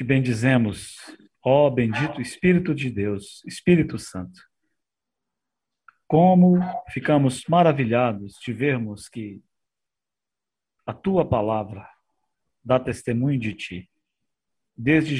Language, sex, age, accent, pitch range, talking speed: Portuguese, male, 50-69, Brazilian, 110-150 Hz, 90 wpm